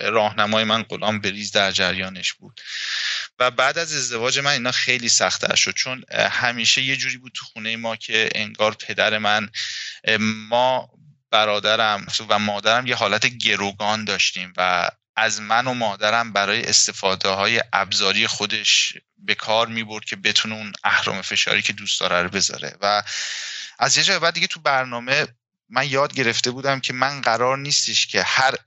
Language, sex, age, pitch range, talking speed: Persian, male, 30-49, 105-125 Hz, 160 wpm